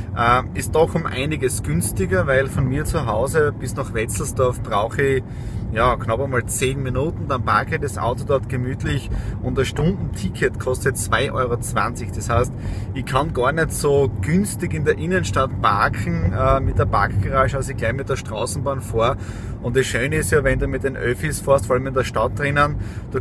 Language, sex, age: German, male, 30-49